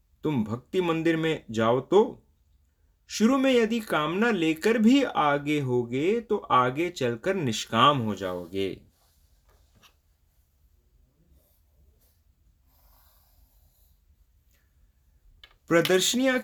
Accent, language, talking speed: Indian, English, 75 wpm